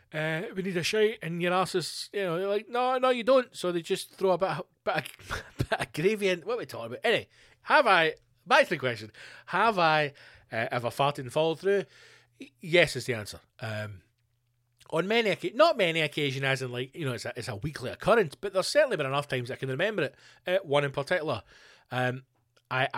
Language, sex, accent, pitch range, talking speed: English, male, British, 120-170 Hz, 220 wpm